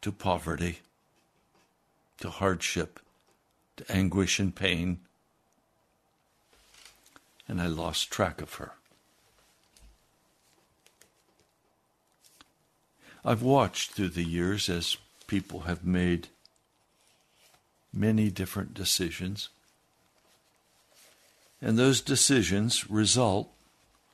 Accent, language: American, English